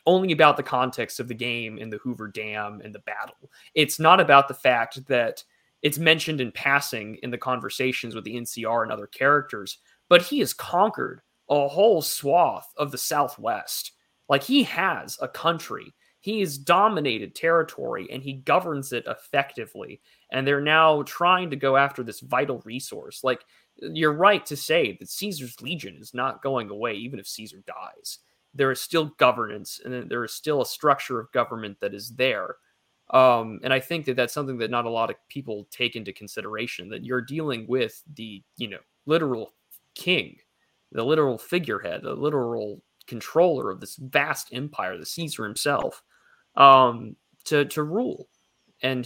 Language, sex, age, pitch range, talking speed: English, male, 20-39, 120-150 Hz, 170 wpm